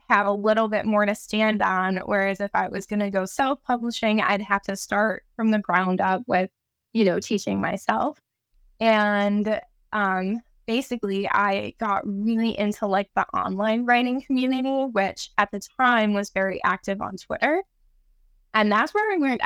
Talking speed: 165 wpm